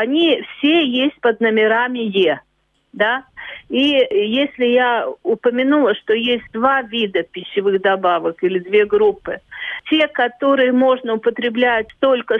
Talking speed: 120 wpm